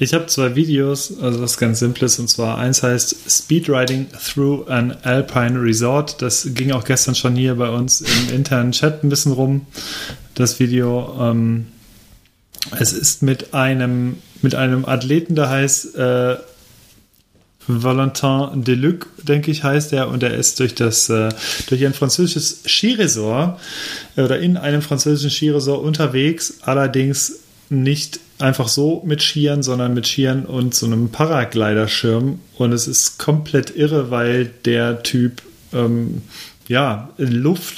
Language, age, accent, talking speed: German, 30-49, German, 145 wpm